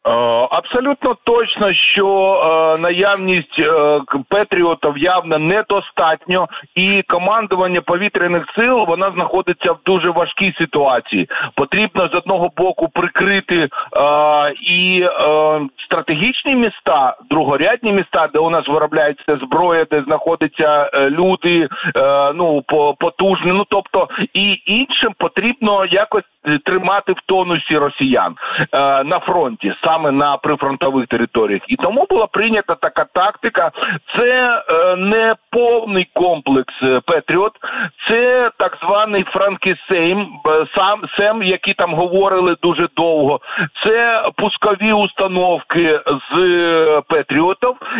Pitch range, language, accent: 160-210 Hz, Ukrainian, native